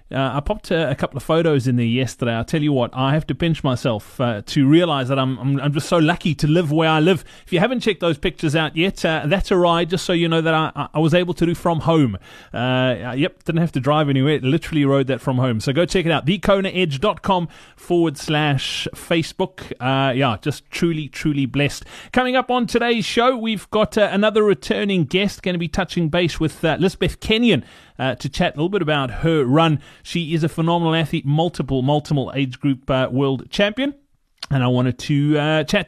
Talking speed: 230 wpm